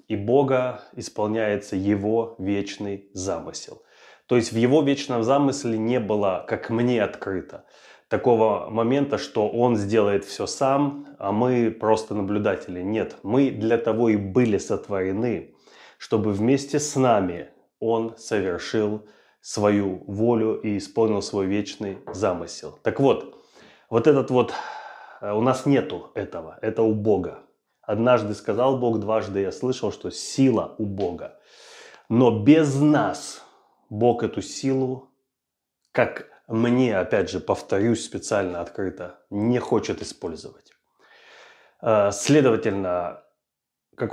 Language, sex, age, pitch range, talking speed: Russian, male, 20-39, 105-130 Hz, 120 wpm